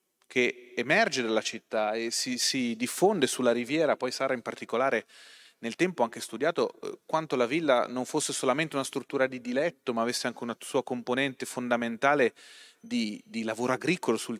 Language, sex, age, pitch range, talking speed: Italian, male, 30-49, 115-150 Hz, 170 wpm